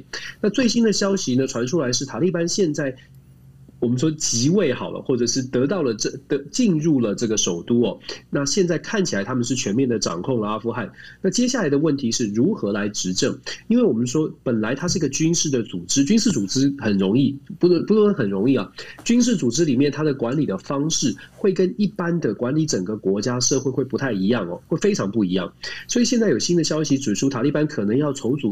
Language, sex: Chinese, male